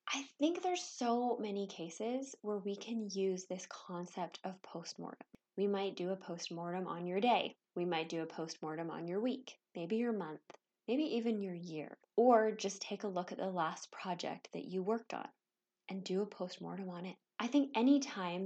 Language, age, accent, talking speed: English, 10-29, American, 195 wpm